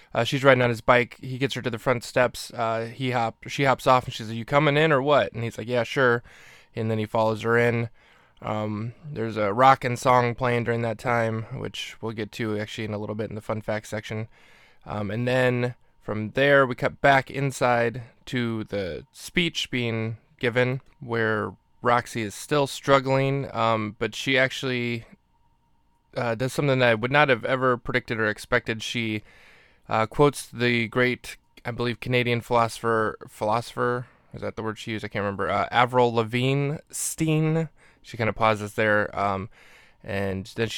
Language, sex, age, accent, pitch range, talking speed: English, male, 20-39, American, 110-130 Hz, 190 wpm